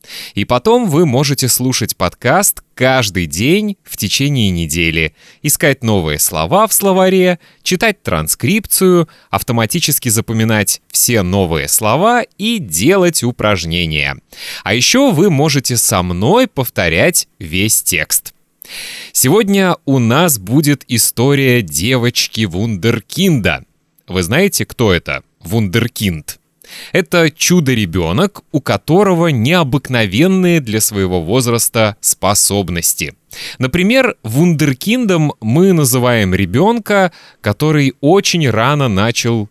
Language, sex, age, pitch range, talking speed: Russian, male, 30-49, 100-160 Hz, 95 wpm